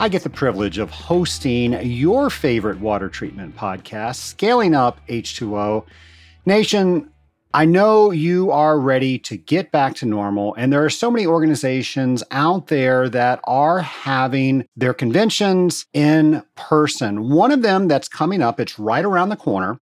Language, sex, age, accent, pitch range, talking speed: English, male, 40-59, American, 115-160 Hz, 155 wpm